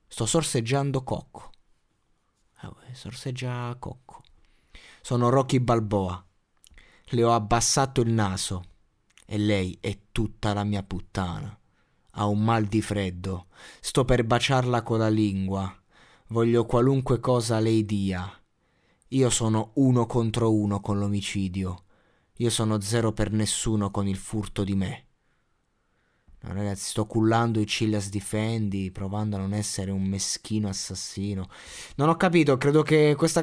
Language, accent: Italian, native